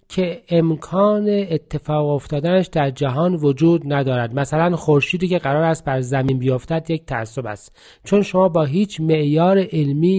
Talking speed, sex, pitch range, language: 145 wpm, male, 130-180 Hz, Persian